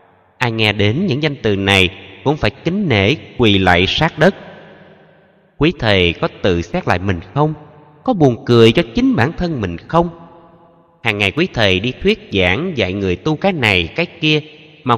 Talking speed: 190 wpm